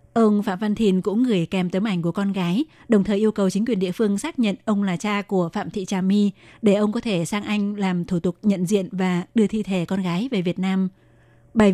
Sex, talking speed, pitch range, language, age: female, 260 wpm, 185-220 Hz, Vietnamese, 20-39